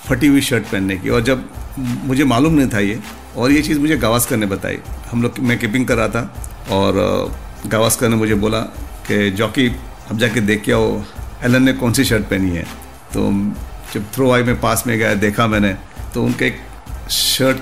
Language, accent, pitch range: Hindi, native, 105-130 Hz